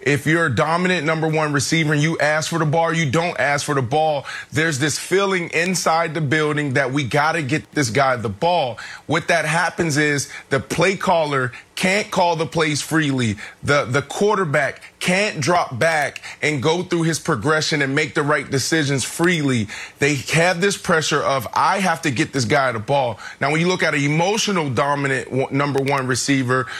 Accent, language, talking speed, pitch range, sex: American, English, 195 wpm, 140-170 Hz, male